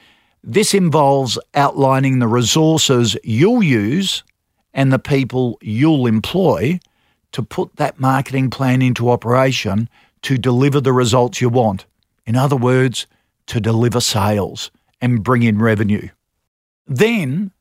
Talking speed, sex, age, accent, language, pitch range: 125 wpm, male, 50-69, Australian, English, 115-155 Hz